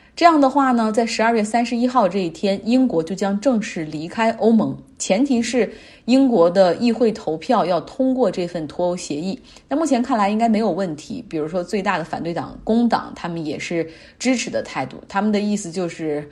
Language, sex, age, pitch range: Chinese, female, 30-49, 175-235 Hz